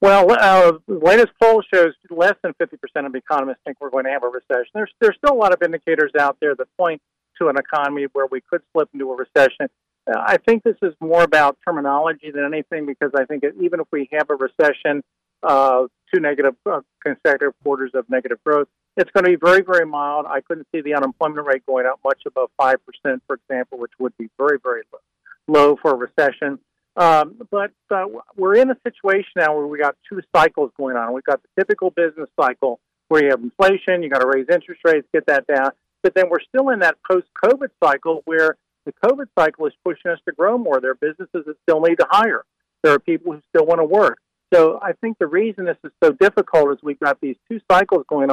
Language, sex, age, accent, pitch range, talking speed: English, male, 50-69, American, 140-195 Hz, 225 wpm